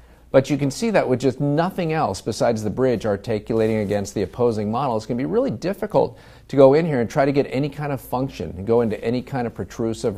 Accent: American